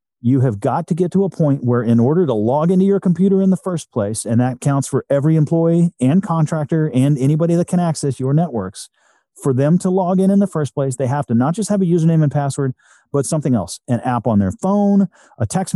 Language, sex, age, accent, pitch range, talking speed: English, male, 40-59, American, 125-165 Hz, 245 wpm